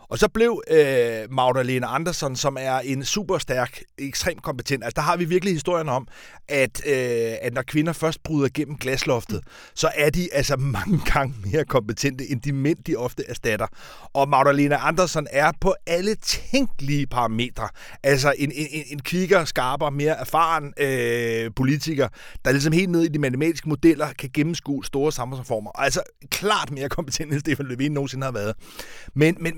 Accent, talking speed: native, 170 wpm